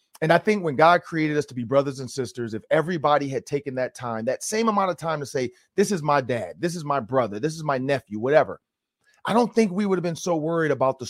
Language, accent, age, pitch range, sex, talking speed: English, American, 30-49, 135-185 Hz, male, 265 wpm